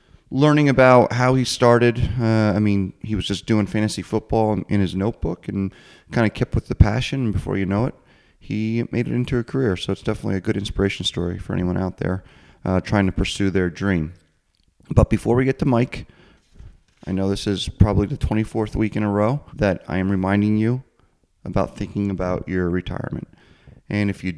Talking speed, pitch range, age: 200 wpm, 100-125 Hz, 30-49